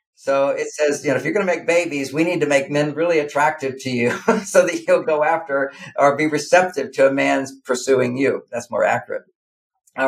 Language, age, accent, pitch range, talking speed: English, 50-69, American, 140-195 Hz, 220 wpm